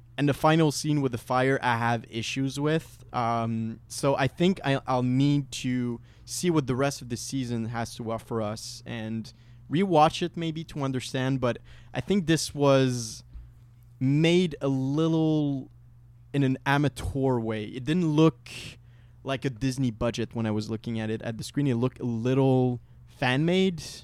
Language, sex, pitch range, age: English, male, 120-145 Hz, 20-39